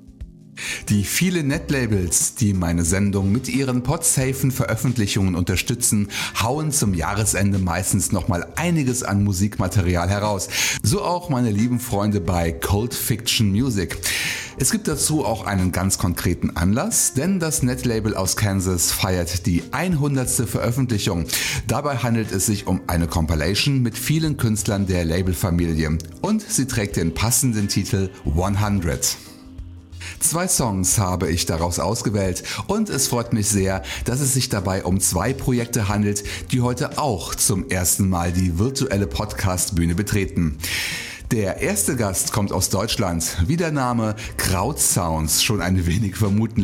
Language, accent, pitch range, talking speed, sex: German, German, 90-125 Hz, 140 wpm, male